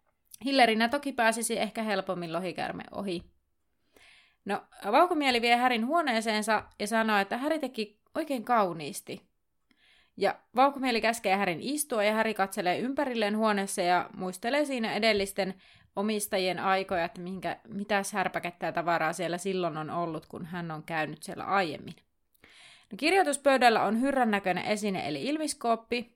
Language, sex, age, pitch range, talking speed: Finnish, female, 30-49, 185-245 Hz, 130 wpm